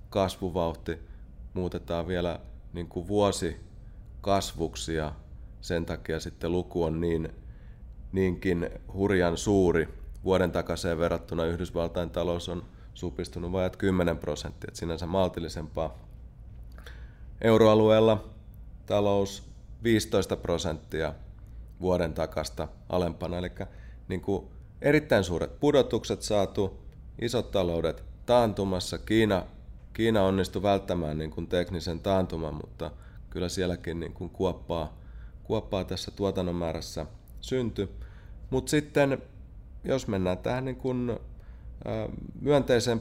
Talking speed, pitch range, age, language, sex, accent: 90 wpm, 85-105 Hz, 30-49, Finnish, male, native